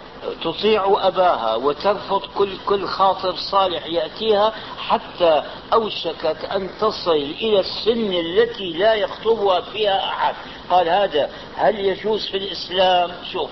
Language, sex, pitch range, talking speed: Arabic, male, 170-205 Hz, 110 wpm